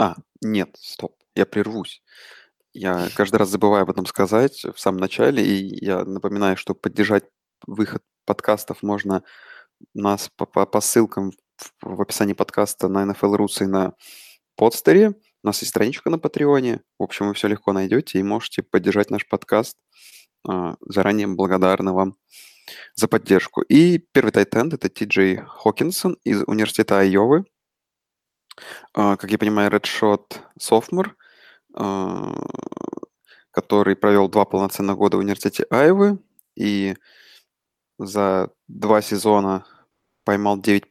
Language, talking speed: Russian, 125 wpm